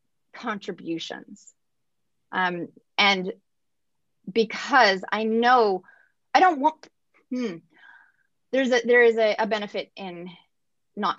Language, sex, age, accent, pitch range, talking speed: English, female, 30-49, American, 220-310 Hz, 100 wpm